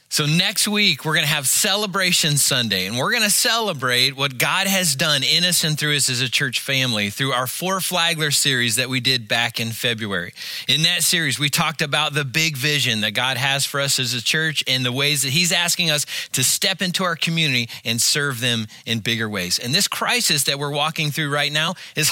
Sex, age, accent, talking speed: male, 30-49, American, 220 wpm